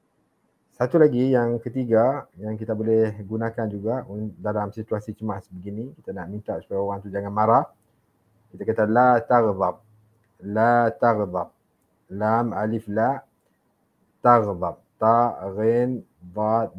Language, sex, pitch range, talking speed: English, male, 105-120 Hz, 120 wpm